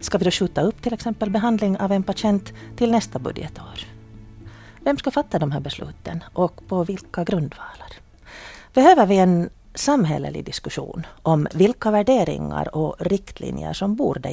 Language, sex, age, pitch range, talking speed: Finnish, female, 40-59, 160-215 Hz, 150 wpm